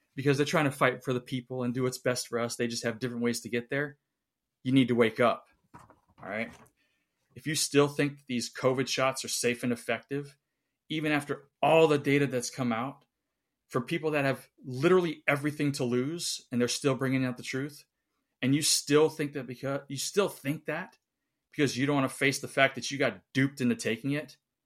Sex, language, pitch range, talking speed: male, English, 120-145 Hz, 215 wpm